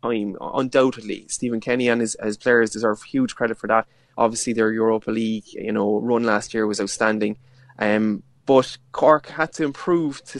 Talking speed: 185 wpm